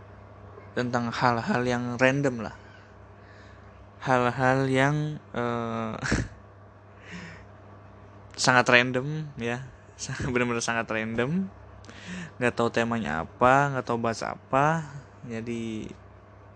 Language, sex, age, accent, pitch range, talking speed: Indonesian, male, 20-39, native, 100-125 Hz, 85 wpm